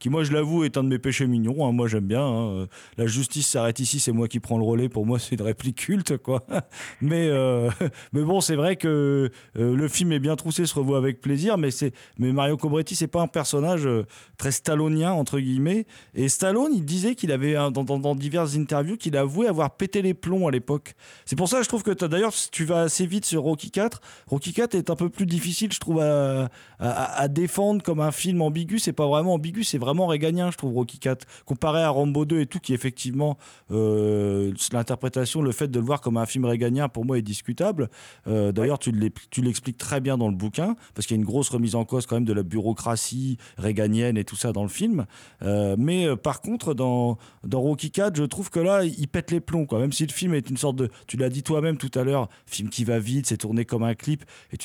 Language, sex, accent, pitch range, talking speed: French, male, French, 120-160 Hz, 240 wpm